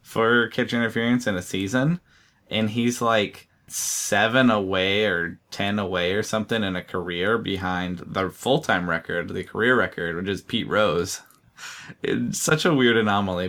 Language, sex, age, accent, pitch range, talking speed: English, male, 20-39, American, 90-110 Hz, 155 wpm